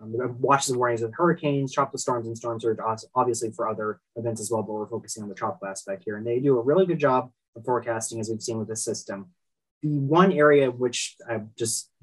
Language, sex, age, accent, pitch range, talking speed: English, male, 20-39, American, 115-140 Hz, 245 wpm